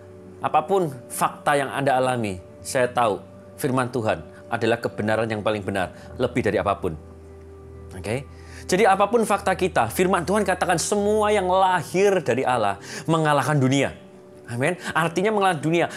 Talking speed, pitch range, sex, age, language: 140 wpm, 115-180 Hz, male, 30-49, Indonesian